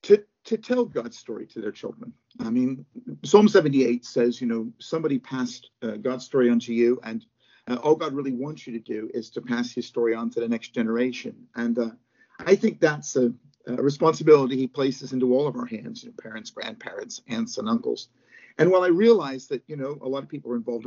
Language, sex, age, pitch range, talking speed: English, male, 50-69, 120-165 Hz, 215 wpm